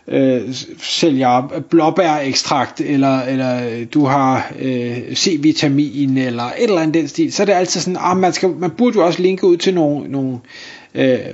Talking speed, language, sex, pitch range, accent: 180 wpm, Danish, male, 140-190 Hz, native